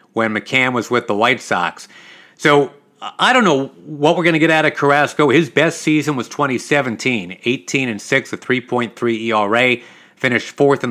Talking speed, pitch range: 170 wpm, 120-160 Hz